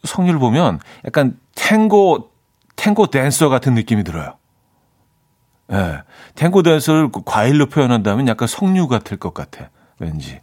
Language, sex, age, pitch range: Korean, male, 40-59, 105-140 Hz